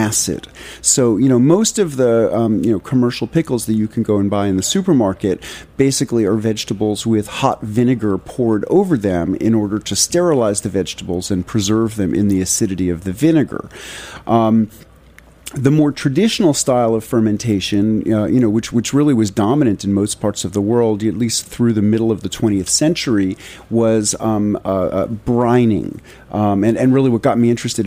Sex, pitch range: male, 100-120 Hz